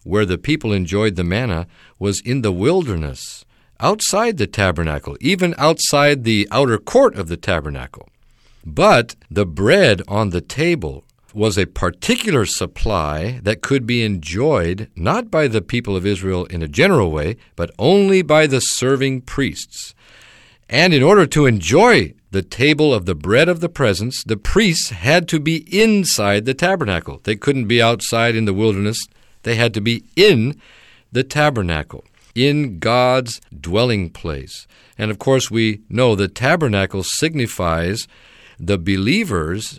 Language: English